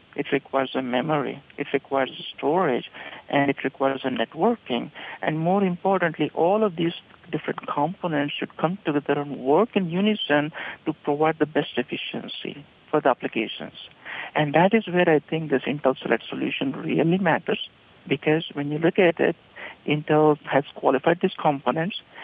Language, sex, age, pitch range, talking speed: English, male, 60-79, 145-175 Hz, 160 wpm